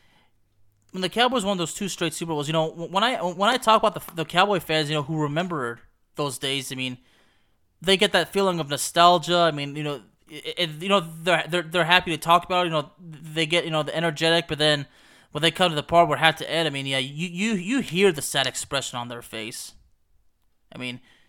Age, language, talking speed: 20-39, English, 245 wpm